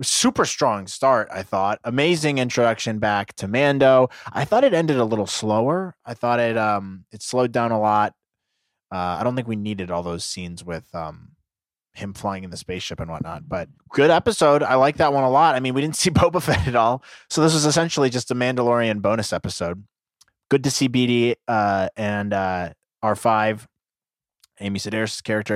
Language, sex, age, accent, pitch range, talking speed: English, male, 20-39, American, 105-145 Hz, 195 wpm